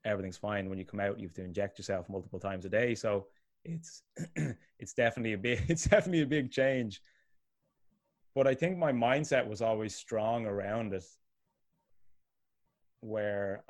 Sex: male